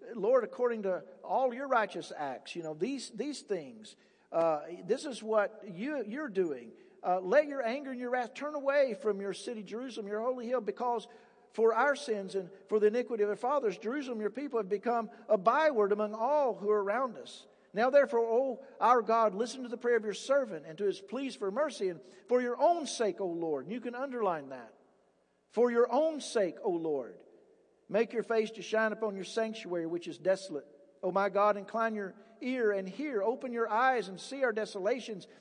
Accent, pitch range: American, 205-260 Hz